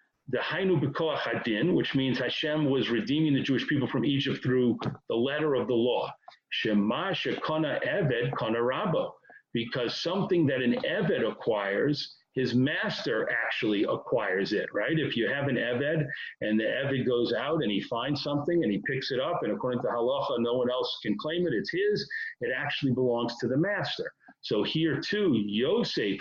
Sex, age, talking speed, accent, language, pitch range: male, 40-59, 175 wpm, American, English, 125-155 Hz